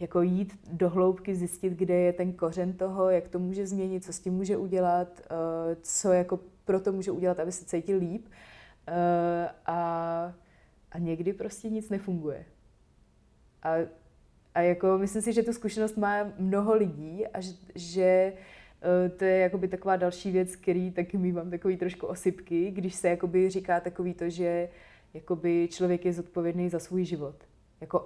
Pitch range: 170-185 Hz